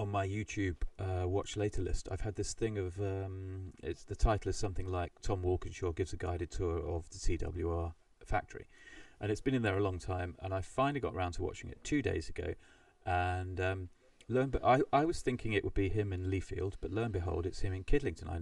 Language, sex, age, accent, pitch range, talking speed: English, male, 30-49, British, 90-105 Hz, 230 wpm